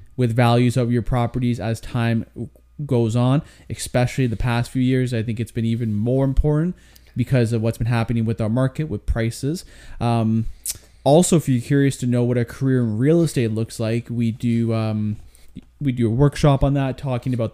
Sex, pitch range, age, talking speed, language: male, 115-130 Hz, 20-39, 195 wpm, English